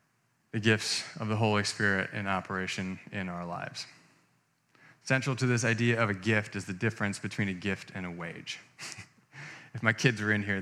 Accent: American